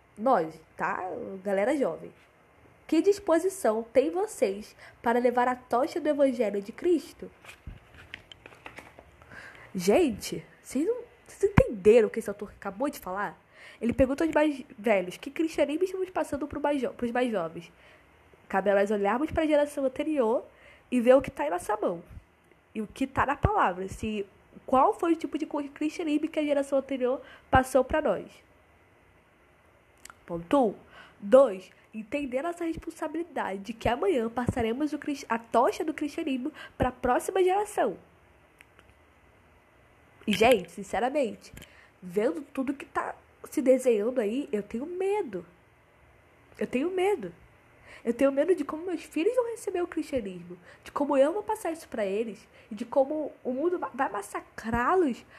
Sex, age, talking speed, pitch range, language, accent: female, 10-29, 150 wpm, 230-320 Hz, Portuguese, Brazilian